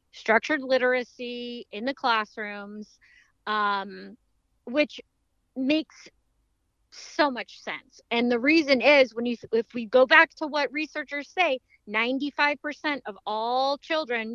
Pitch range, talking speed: 225-300 Hz, 120 wpm